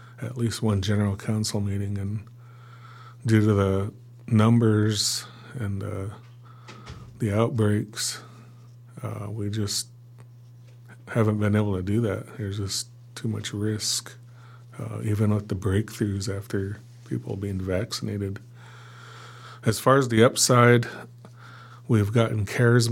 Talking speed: 120 wpm